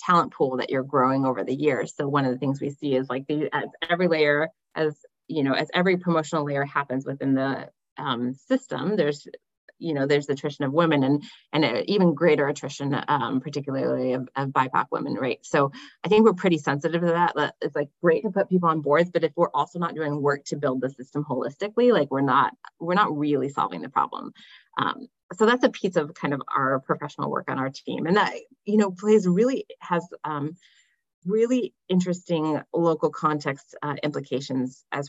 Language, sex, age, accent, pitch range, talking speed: English, female, 30-49, American, 135-170 Hz, 205 wpm